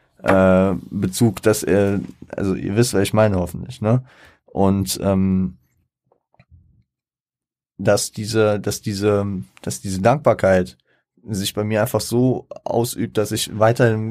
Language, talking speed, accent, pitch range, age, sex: German, 130 wpm, German, 95-110 Hz, 20-39, male